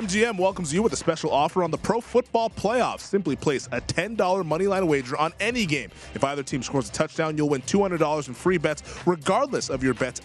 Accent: American